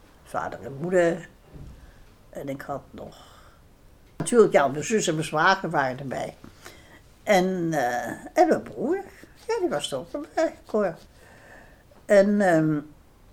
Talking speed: 130 wpm